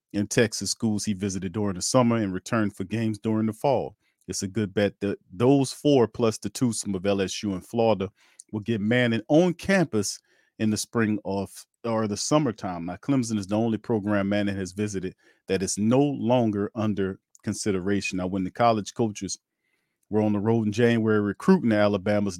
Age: 40-59